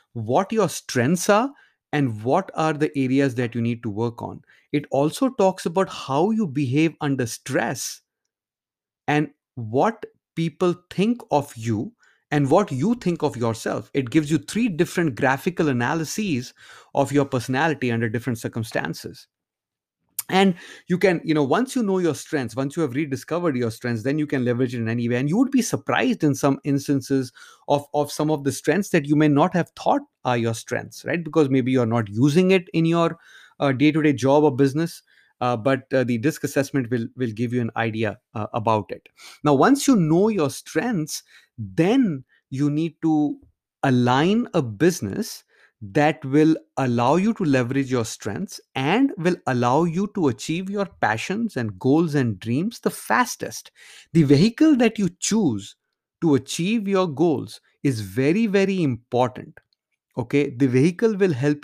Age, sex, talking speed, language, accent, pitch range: 30-49, male, 175 wpm, English, Indian, 130-180 Hz